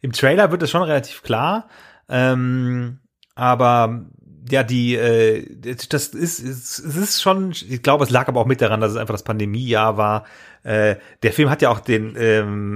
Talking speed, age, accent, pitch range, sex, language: 195 wpm, 30-49, German, 110-140 Hz, male, German